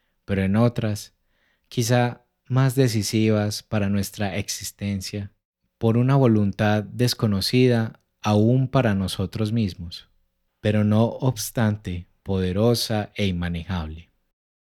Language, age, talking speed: Spanish, 30-49, 95 wpm